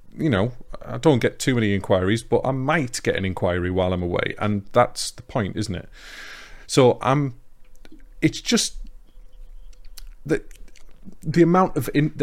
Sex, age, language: male, 30-49, English